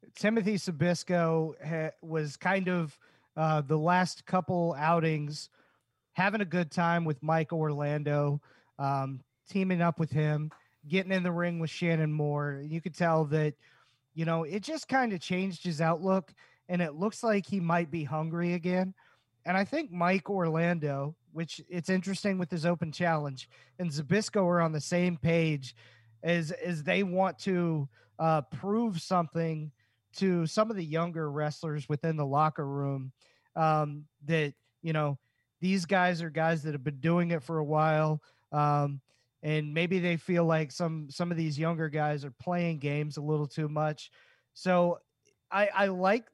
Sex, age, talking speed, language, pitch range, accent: male, 30-49, 165 wpm, English, 150-180 Hz, American